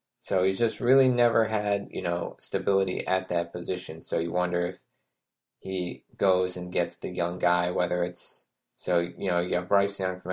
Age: 20-39